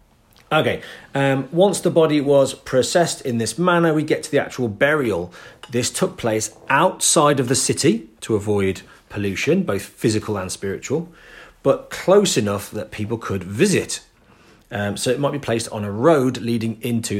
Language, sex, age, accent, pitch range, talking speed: English, male, 40-59, British, 110-145 Hz, 170 wpm